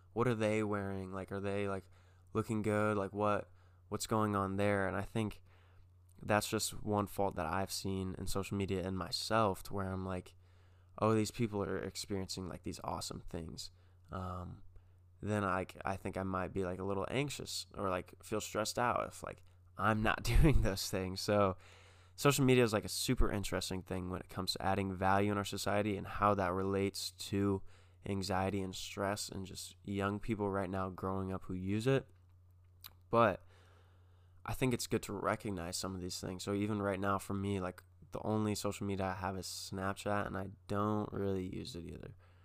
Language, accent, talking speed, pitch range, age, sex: English, American, 195 wpm, 90-105 Hz, 20-39, male